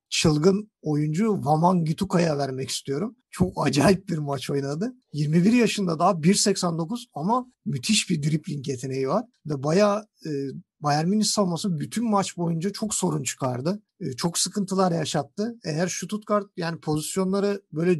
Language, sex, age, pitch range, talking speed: Turkish, male, 50-69, 150-190 Hz, 140 wpm